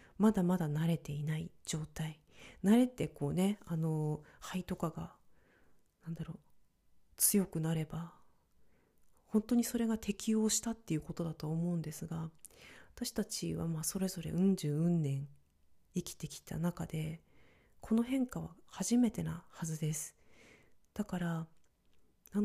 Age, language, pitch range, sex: 40-59, Japanese, 160-210 Hz, female